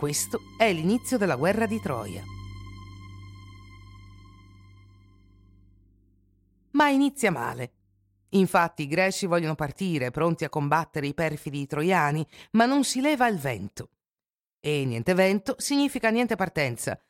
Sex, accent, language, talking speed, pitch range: female, native, Italian, 115 wpm, 120-200 Hz